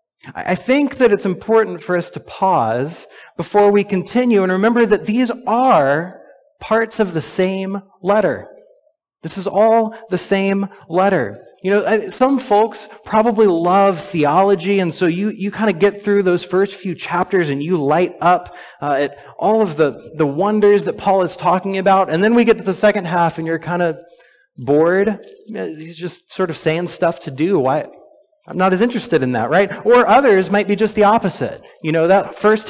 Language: English